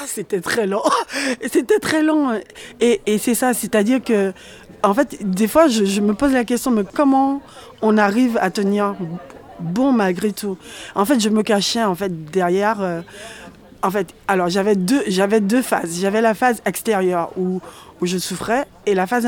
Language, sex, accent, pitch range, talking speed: French, female, French, 190-230 Hz, 190 wpm